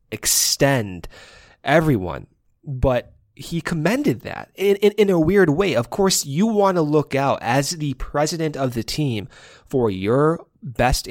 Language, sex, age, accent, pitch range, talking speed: English, male, 20-39, American, 120-150 Hz, 150 wpm